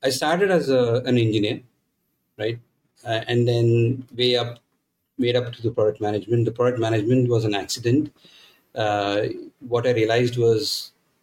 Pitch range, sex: 110-130 Hz, male